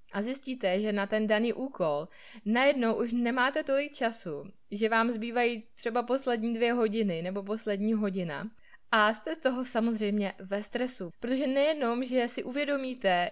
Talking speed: 155 wpm